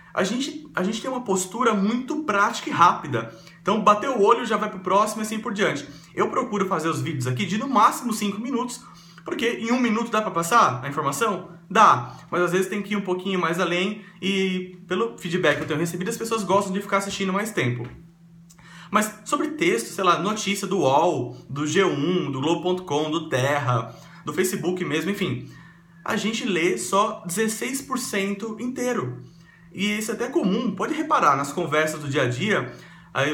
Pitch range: 165-210 Hz